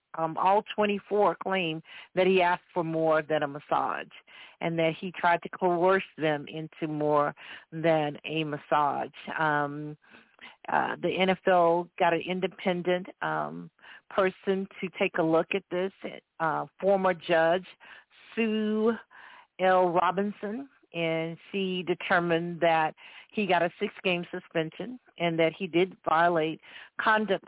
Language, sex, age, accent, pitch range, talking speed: English, female, 50-69, American, 160-190 Hz, 130 wpm